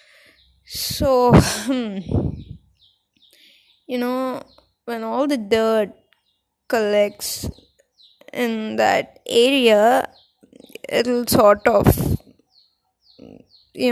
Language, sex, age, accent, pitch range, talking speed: English, female, 20-39, Indian, 205-255 Hz, 65 wpm